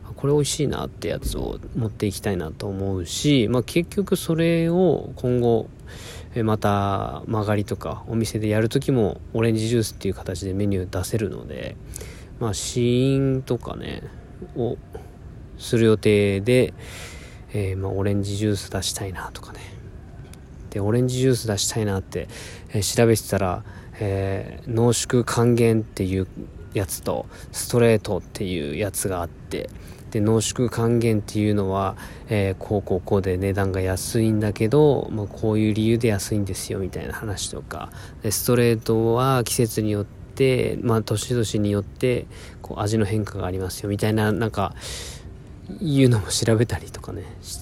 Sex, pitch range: male, 95-115 Hz